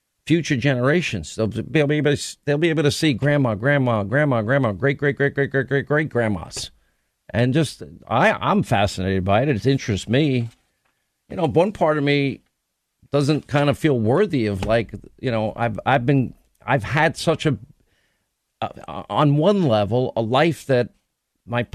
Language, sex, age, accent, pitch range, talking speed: English, male, 50-69, American, 110-145 Hz, 175 wpm